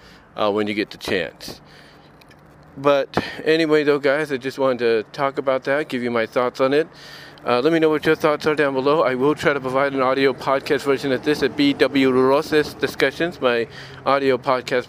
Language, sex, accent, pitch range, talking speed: English, male, American, 125-155 Hz, 205 wpm